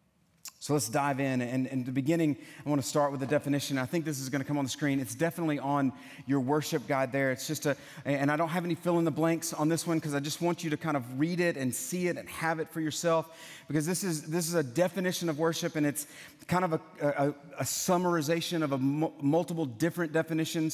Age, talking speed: 30-49, 255 wpm